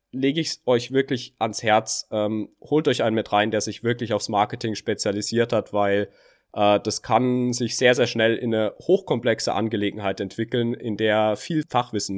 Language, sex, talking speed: German, male, 175 wpm